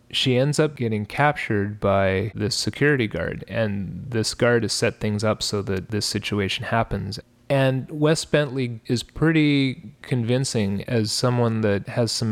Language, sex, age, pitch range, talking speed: English, male, 30-49, 105-120 Hz, 155 wpm